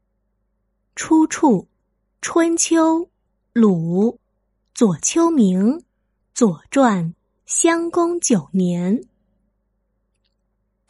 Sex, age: female, 20-39